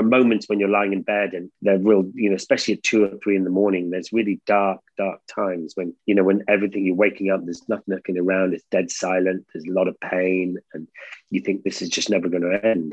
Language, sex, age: English, male, 40-59